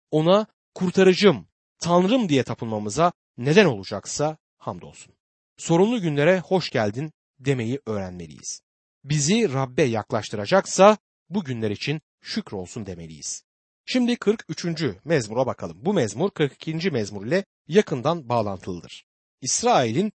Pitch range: 115-185 Hz